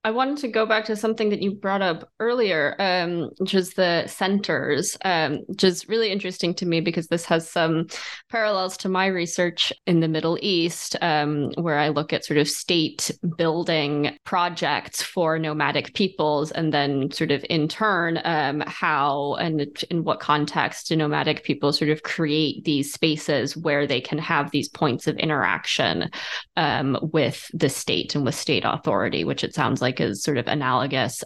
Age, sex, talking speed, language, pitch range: 20-39, female, 180 wpm, English, 155-185 Hz